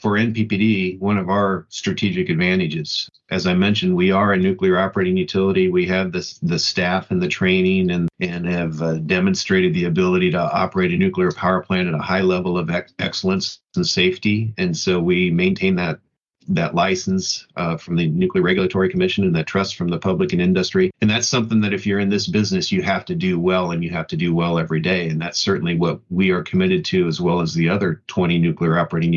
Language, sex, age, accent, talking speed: English, male, 40-59, American, 210 wpm